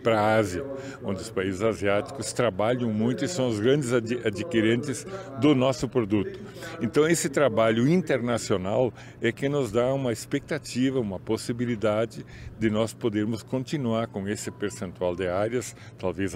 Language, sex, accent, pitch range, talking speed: Portuguese, male, Brazilian, 105-130 Hz, 145 wpm